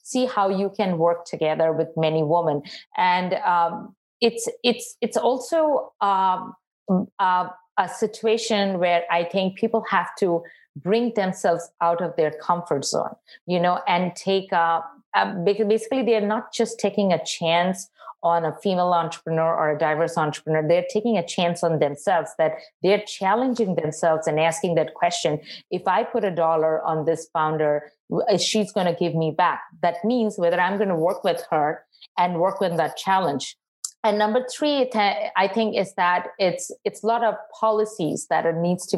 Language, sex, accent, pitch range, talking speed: English, female, Indian, 165-215 Hz, 170 wpm